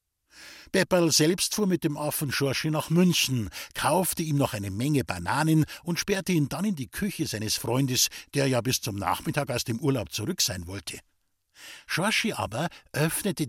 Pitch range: 115-175 Hz